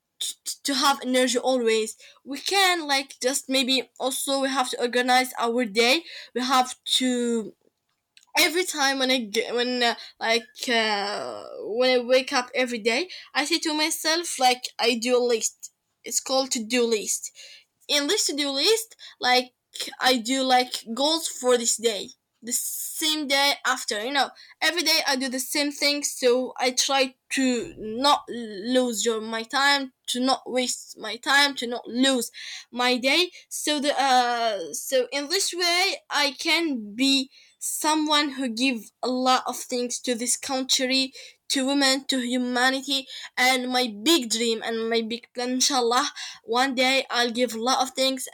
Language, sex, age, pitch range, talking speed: English, female, 10-29, 245-280 Hz, 165 wpm